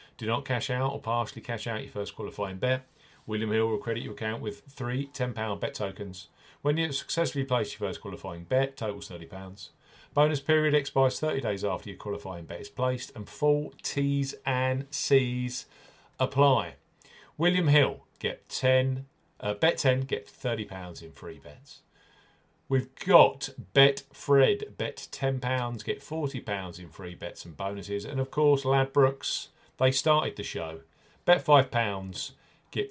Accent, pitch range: British, 100-145 Hz